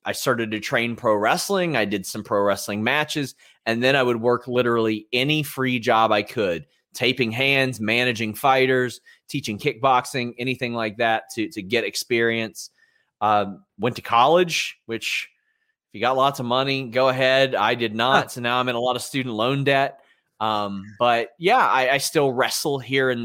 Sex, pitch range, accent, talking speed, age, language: male, 115-140 Hz, American, 185 wpm, 30-49, English